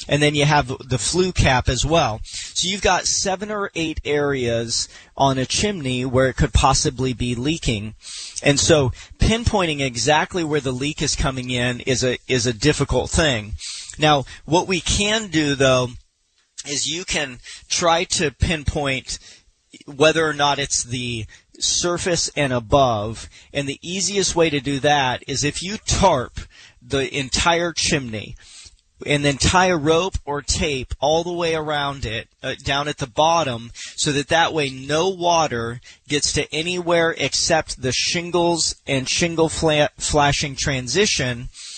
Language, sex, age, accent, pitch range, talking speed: English, male, 40-59, American, 125-160 Hz, 155 wpm